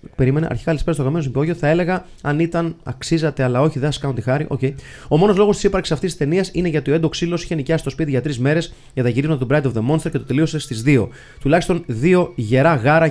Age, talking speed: 30-49, 245 wpm